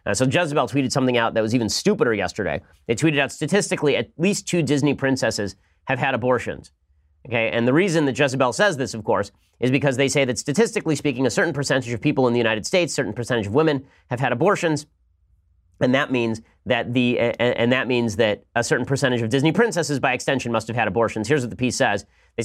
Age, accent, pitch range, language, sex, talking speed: 30-49, American, 120-155 Hz, English, male, 220 wpm